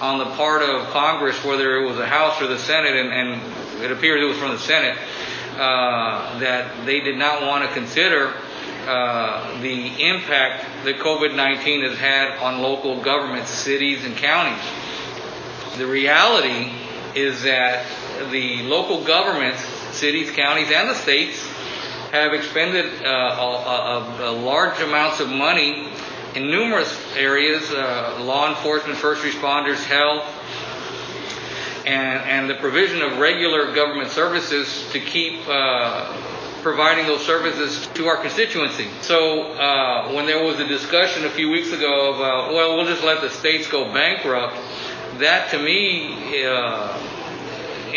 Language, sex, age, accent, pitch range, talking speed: English, male, 50-69, American, 130-155 Hz, 140 wpm